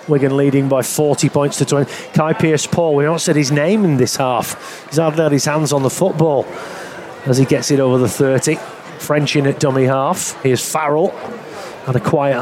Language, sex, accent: English, male, British